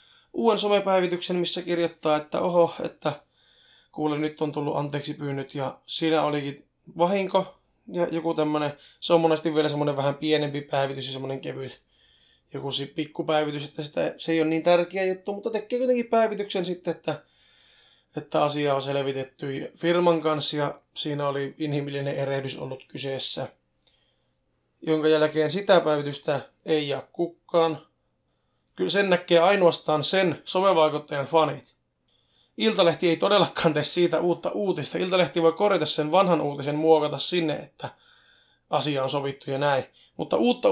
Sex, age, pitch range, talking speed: male, 20-39, 150-185 Hz, 145 wpm